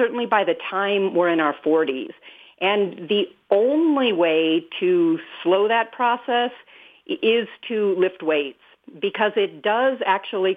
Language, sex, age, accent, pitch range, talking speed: English, female, 50-69, American, 175-240 Hz, 135 wpm